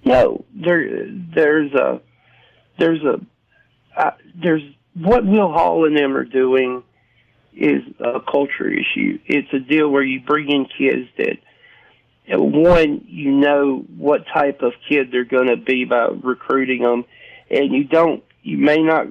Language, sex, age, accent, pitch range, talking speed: English, male, 50-69, American, 125-155 Hz, 150 wpm